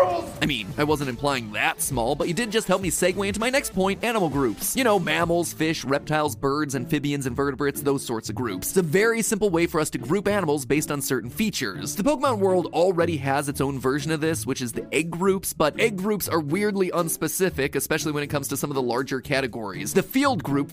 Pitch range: 140-190 Hz